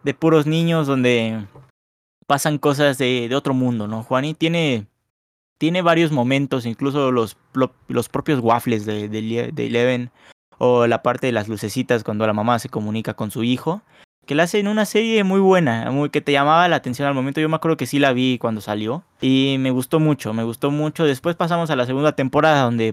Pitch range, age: 115-150 Hz, 20-39